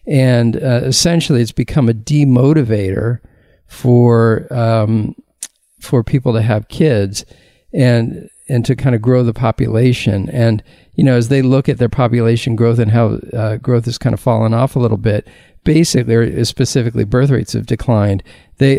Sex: male